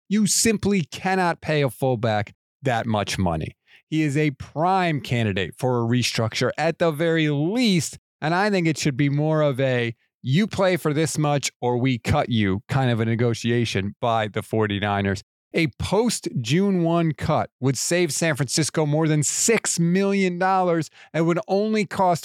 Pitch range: 125-180 Hz